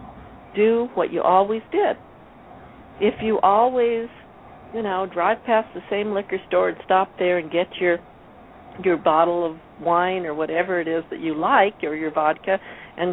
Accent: American